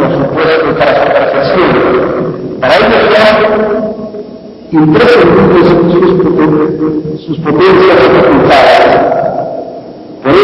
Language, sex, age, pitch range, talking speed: Spanish, male, 50-69, 150-175 Hz, 100 wpm